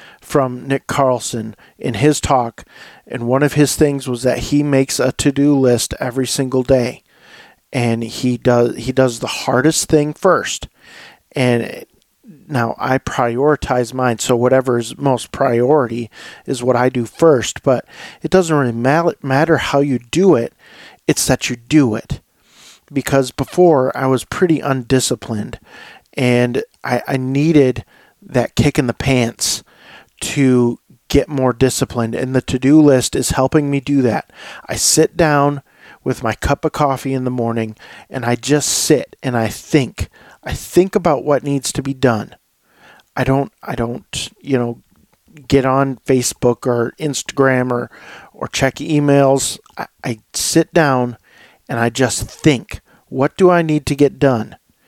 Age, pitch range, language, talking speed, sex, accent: 40-59, 120-145 Hz, English, 155 wpm, male, American